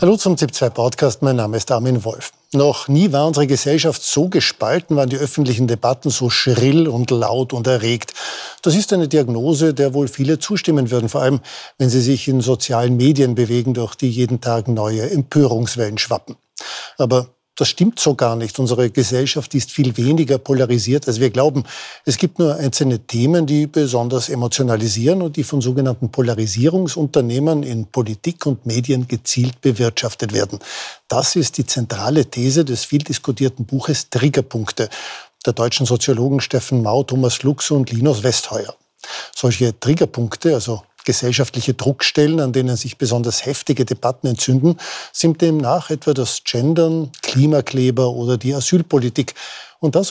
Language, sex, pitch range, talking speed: German, male, 120-150 Hz, 155 wpm